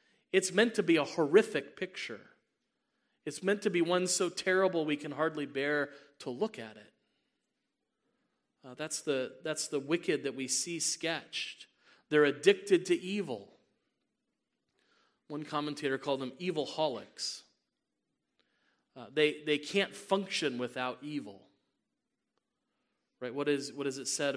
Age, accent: 40-59, American